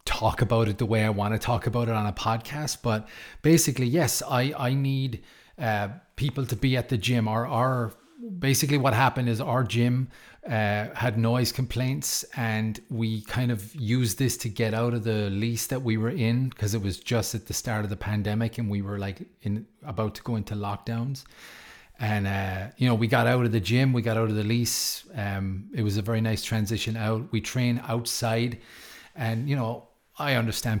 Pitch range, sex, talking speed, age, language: 110-125 Hz, male, 210 wpm, 30-49, English